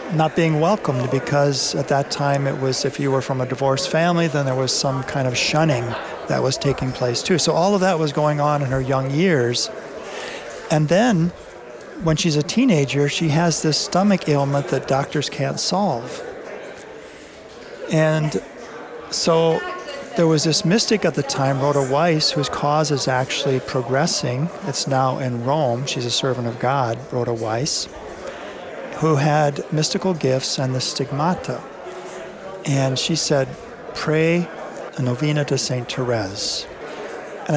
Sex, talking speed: male, 155 wpm